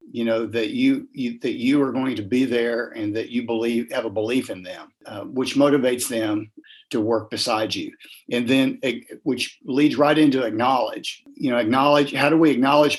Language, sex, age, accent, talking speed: English, male, 50-69, American, 200 wpm